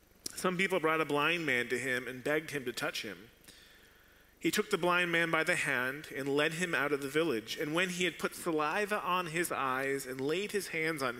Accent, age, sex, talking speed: American, 30-49, male, 230 wpm